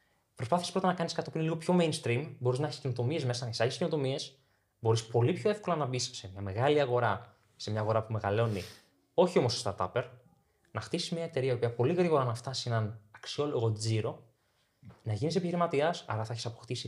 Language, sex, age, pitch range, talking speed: Greek, male, 20-39, 110-140 Hz, 195 wpm